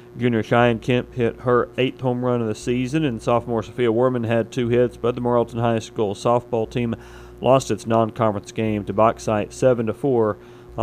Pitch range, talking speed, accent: 110-120 Hz, 185 wpm, American